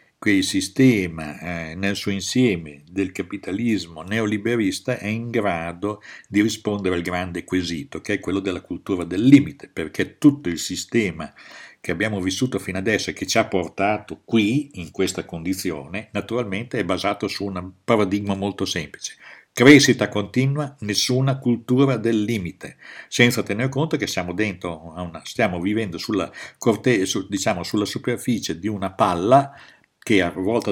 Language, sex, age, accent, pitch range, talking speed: Italian, male, 60-79, native, 90-120 Hz, 155 wpm